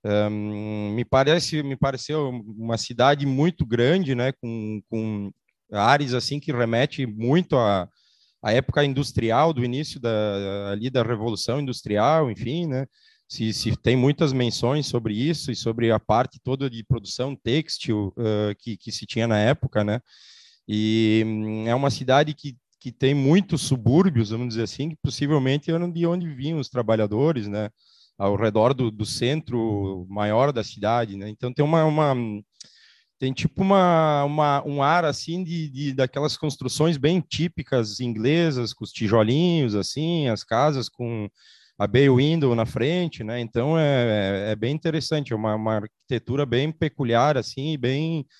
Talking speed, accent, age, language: 155 wpm, Brazilian, 20-39, Portuguese